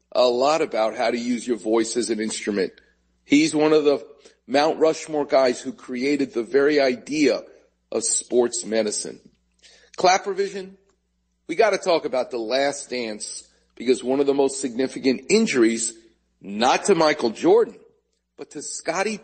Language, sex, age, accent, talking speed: English, male, 40-59, American, 155 wpm